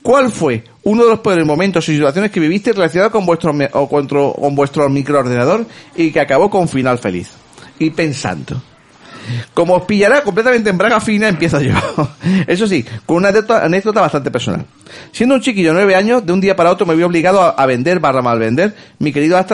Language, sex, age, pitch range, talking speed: Spanish, male, 40-59, 135-190 Hz, 200 wpm